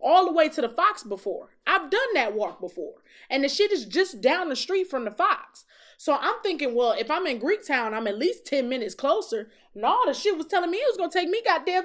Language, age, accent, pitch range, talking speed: English, 20-39, American, 230-360 Hz, 260 wpm